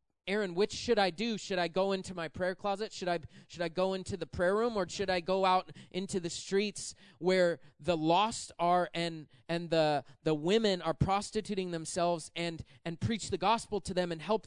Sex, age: male, 20-39